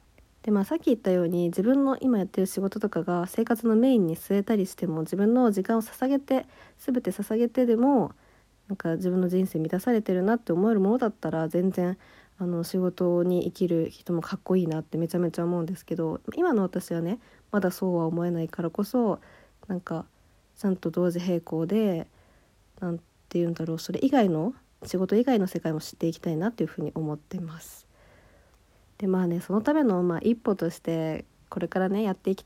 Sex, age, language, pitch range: female, 50-69, Japanese, 170-220 Hz